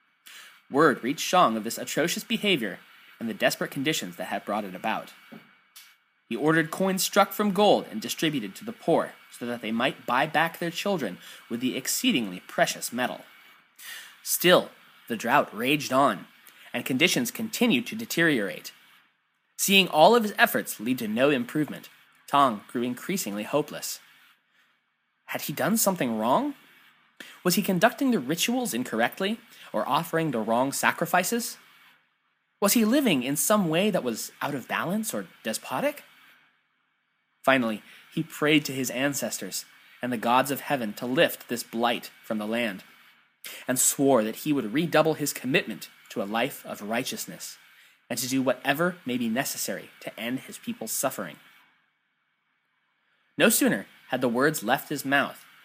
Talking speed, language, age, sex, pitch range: 155 wpm, English, 20-39, male, 140-230 Hz